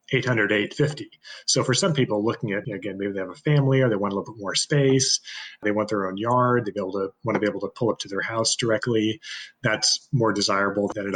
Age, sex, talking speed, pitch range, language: 30-49, male, 240 wpm, 105-135 Hz, English